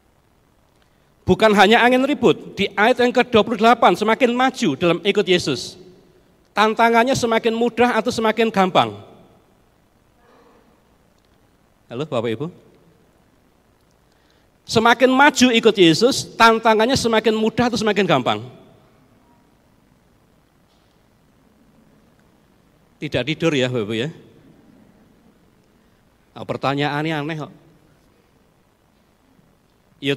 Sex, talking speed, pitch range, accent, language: male, 80 wpm, 175-245 Hz, native, Indonesian